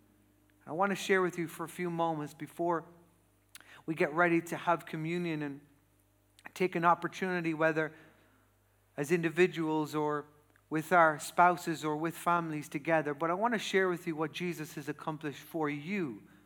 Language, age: English, 40-59